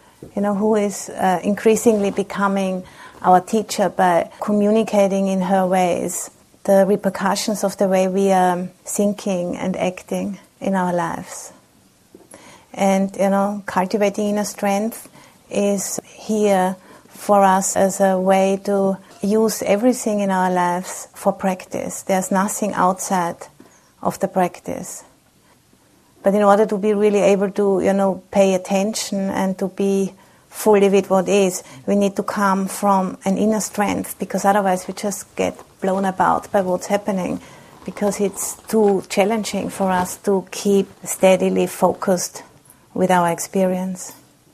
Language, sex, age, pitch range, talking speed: English, female, 30-49, 185-205 Hz, 140 wpm